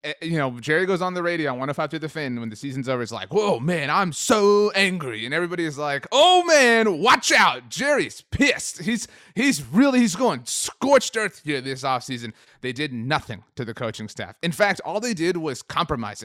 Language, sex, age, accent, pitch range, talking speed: English, male, 30-49, American, 130-180 Hz, 210 wpm